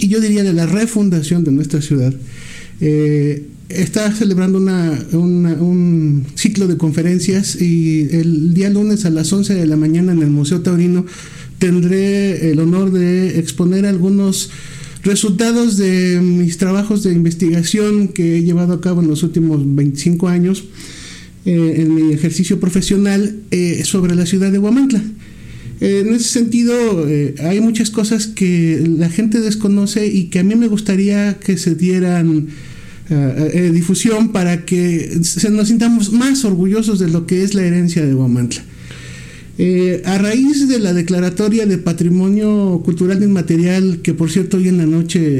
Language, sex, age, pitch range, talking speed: Spanish, male, 50-69, 160-195 Hz, 155 wpm